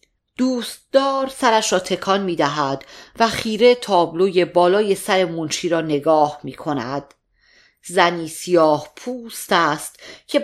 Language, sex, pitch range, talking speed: Persian, female, 155-225 Hz, 120 wpm